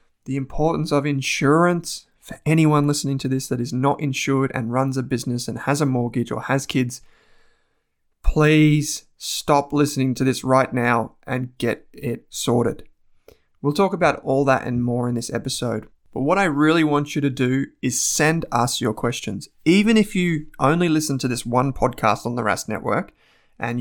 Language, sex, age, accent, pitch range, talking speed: English, male, 20-39, Australian, 120-150 Hz, 180 wpm